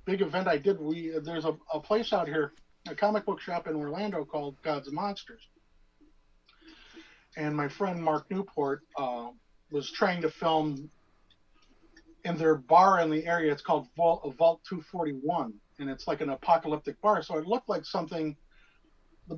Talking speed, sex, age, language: 165 wpm, male, 50-69, English